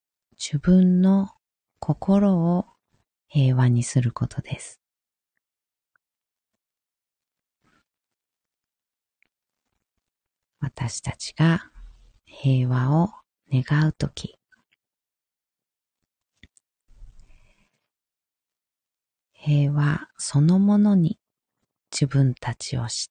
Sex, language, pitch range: female, Japanese, 130-175 Hz